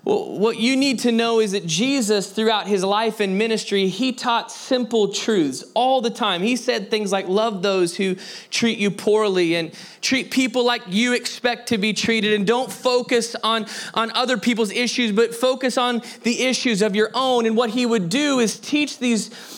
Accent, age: American, 20-39